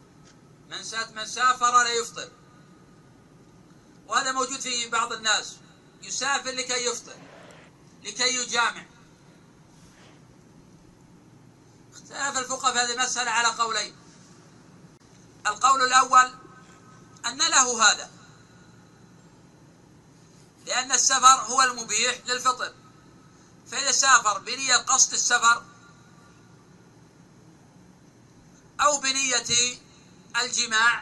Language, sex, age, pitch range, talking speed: Arabic, male, 50-69, 220-255 Hz, 75 wpm